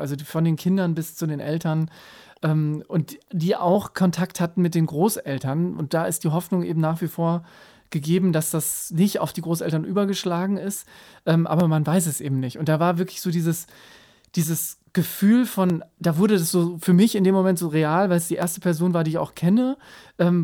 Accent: German